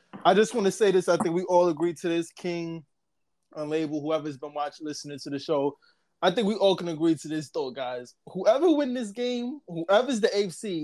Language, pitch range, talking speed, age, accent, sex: English, 150-195 Hz, 215 wpm, 20-39, American, male